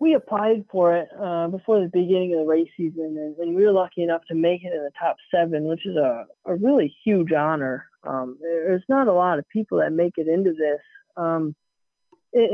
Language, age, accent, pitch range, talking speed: English, 20-39, American, 160-205 Hz, 220 wpm